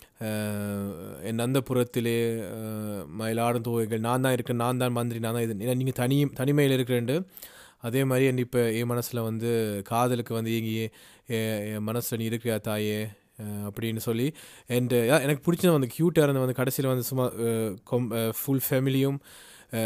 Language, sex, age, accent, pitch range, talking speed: Tamil, male, 20-39, native, 110-130 Hz, 145 wpm